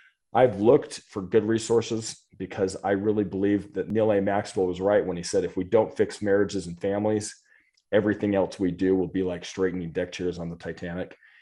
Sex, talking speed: male, 200 wpm